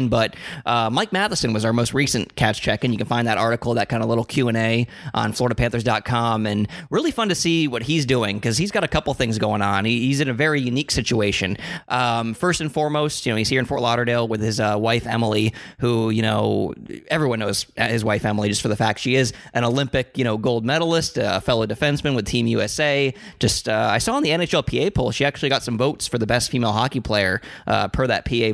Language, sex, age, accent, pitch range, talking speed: English, male, 20-39, American, 110-135 Hz, 235 wpm